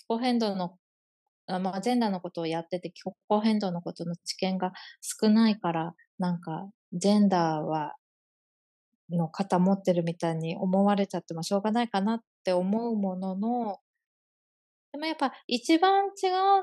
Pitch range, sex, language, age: 175-240 Hz, female, Japanese, 20-39